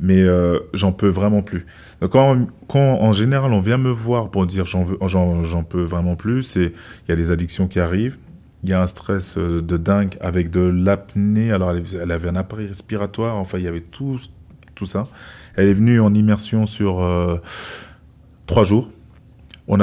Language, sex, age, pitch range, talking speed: French, male, 20-39, 85-105 Hz, 195 wpm